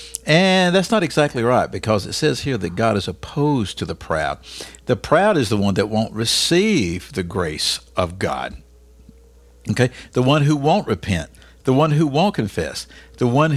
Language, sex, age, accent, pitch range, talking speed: English, male, 60-79, American, 90-135 Hz, 180 wpm